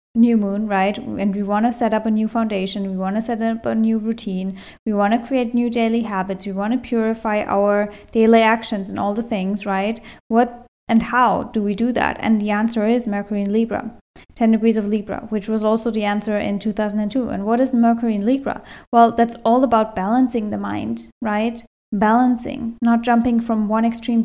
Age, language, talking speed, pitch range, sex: 10-29, English, 210 wpm, 210-245 Hz, female